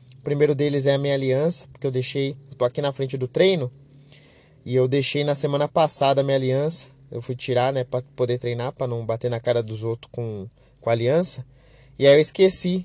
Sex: male